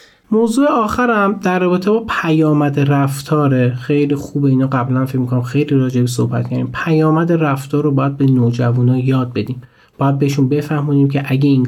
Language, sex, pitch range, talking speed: Persian, male, 130-170 Hz, 165 wpm